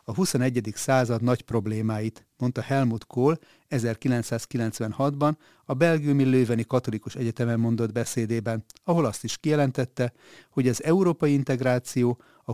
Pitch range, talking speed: 115-140 Hz, 120 wpm